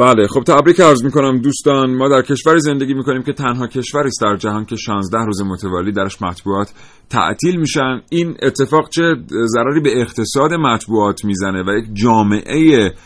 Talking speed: 180 wpm